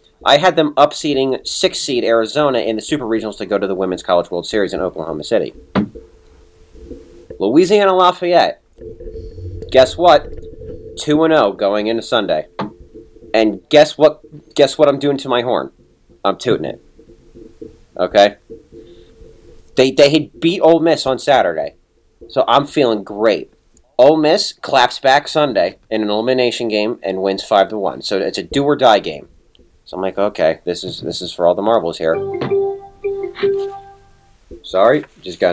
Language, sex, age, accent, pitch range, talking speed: English, male, 30-49, American, 95-150 Hz, 150 wpm